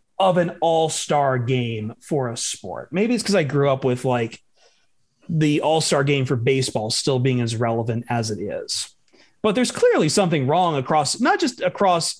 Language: English